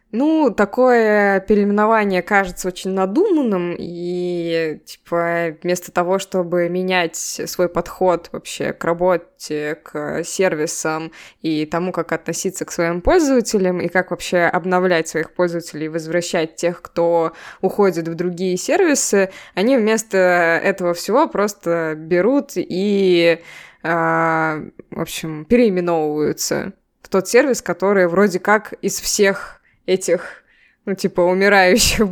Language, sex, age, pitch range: Russian, female, 20-39, 165-195 Hz